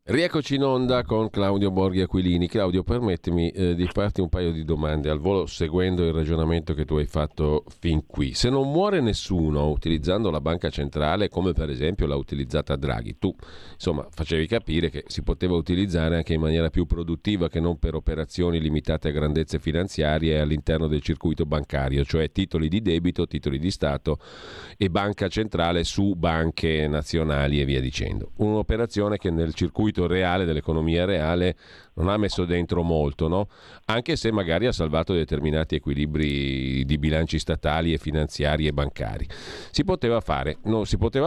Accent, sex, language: native, male, Italian